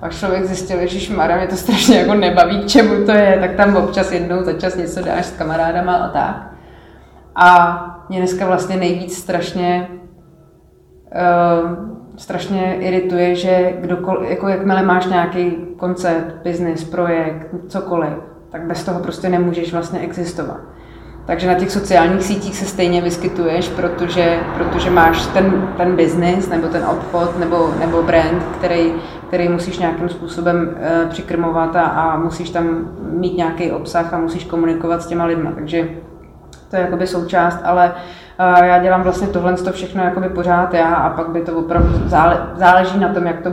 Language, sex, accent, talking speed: Czech, female, native, 160 wpm